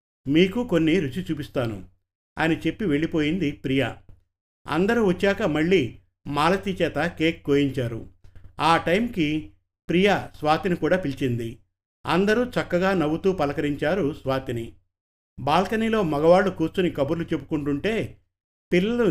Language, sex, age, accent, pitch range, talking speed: Telugu, male, 50-69, native, 120-175 Hz, 95 wpm